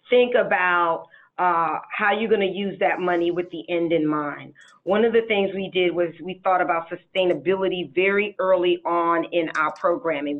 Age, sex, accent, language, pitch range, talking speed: 40-59, female, American, English, 175-210 Hz, 180 wpm